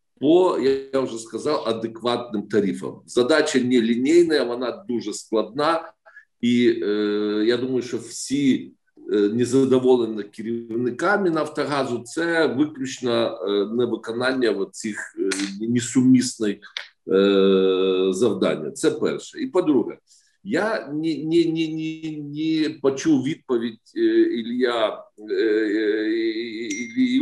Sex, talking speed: male, 95 wpm